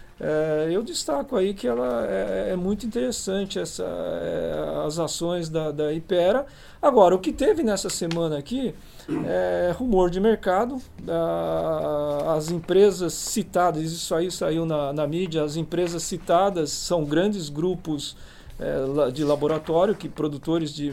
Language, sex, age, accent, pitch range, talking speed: Portuguese, male, 40-59, Brazilian, 155-200 Hz, 145 wpm